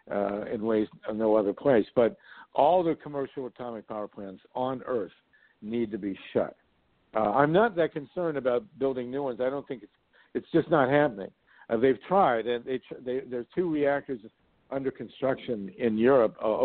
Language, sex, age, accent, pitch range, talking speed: English, male, 60-79, American, 110-140 Hz, 185 wpm